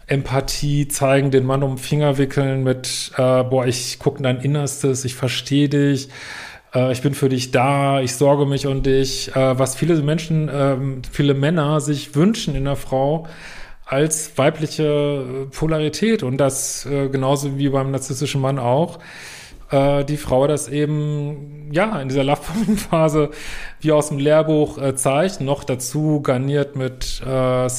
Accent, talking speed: German, 155 wpm